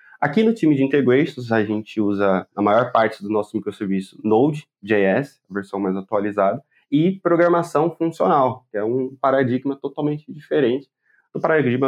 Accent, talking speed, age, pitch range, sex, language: Brazilian, 150 wpm, 20-39, 110-140 Hz, male, Portuguese